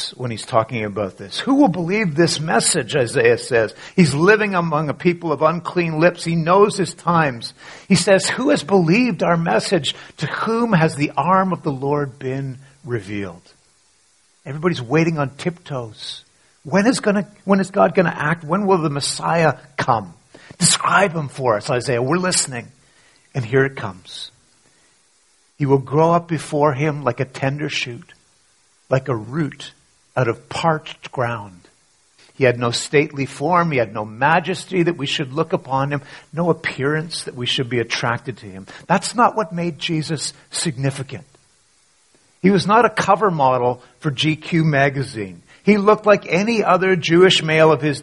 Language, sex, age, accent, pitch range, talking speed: English, male, 50-69, American, 135-180 Hz, 170 wpm